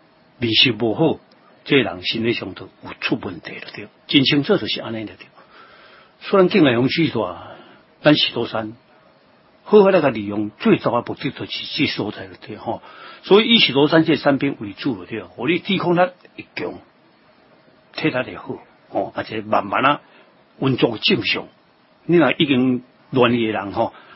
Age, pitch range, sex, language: 60-79, 110-150 Hz, male, Chinese